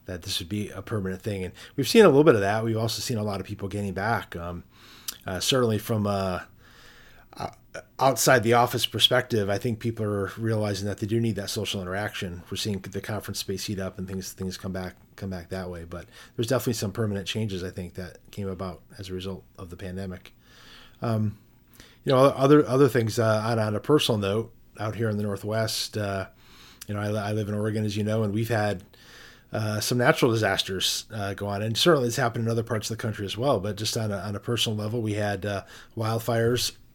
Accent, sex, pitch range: American, male, 100-115 Hz